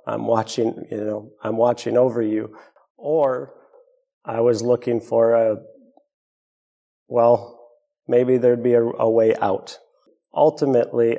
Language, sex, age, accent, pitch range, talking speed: English, male, 40-59, American, 115-125 Hz, 125 wpm